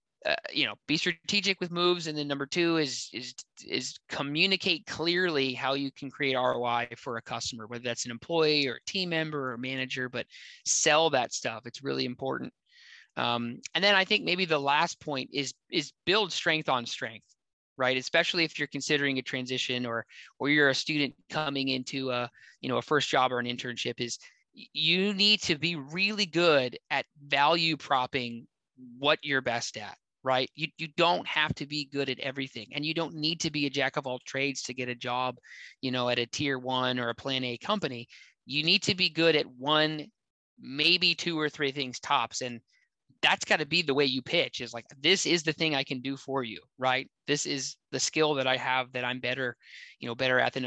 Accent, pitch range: American, 125-160 Hz